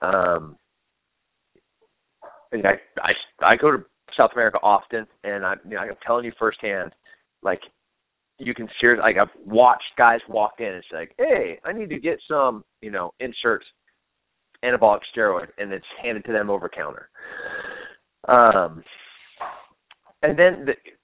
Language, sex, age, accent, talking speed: English, male, 30-49, American, 150 wpm